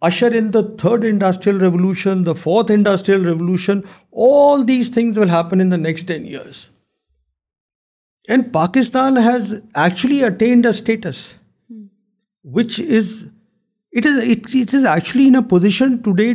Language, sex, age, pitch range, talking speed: Urdu, male, 50-69, 185-240 Hz, 145 wpm